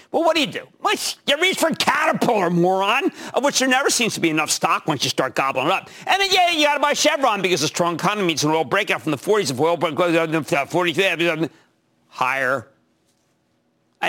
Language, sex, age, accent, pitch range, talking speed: English, male, 50-69, American, 160-255 Hz, 225 wpm